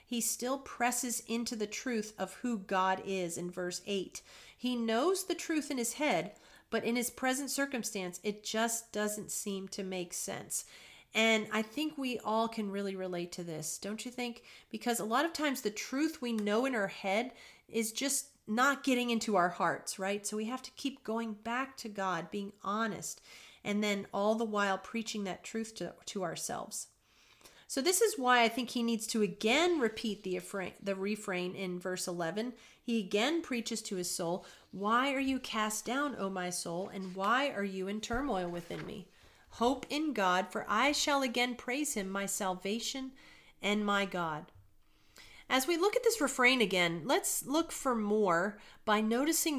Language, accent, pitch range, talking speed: English, American, 195-245 Hz, 185 wpm